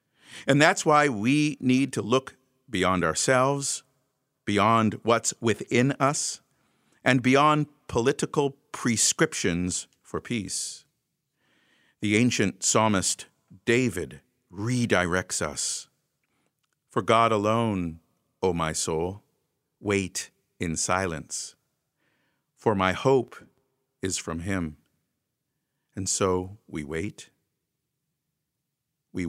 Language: English